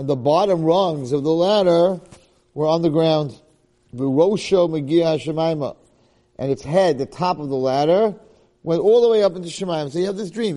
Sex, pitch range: male, 125-170 Hz